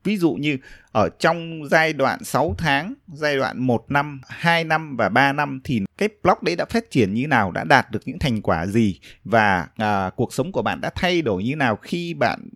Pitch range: 110-155 Hz